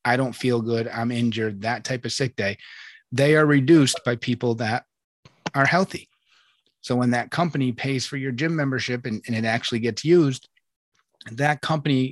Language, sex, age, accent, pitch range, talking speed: English, male, 30-49, American, 115-140 Hz, 180 wpm